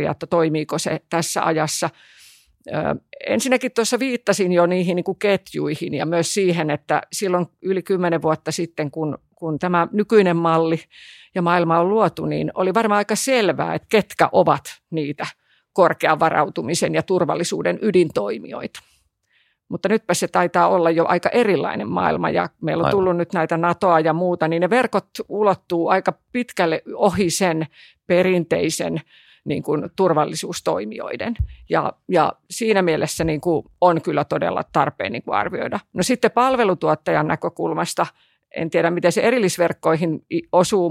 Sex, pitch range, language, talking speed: female, 160-190 Hz, Finnish, 145 wpm